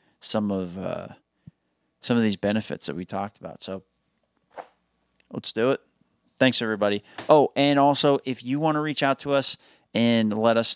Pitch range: 95-130 Hz